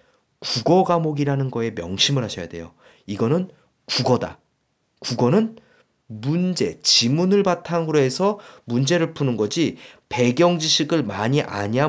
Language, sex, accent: Korean, male, native